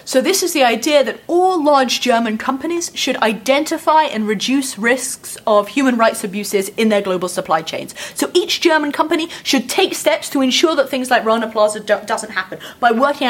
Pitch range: 220-295 Hz